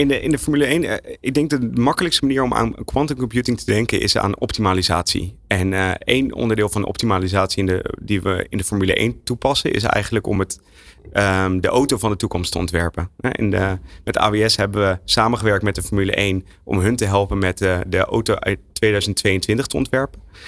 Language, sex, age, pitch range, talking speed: Dutch, male, 30-49, 95-125 Hz, 190 wpm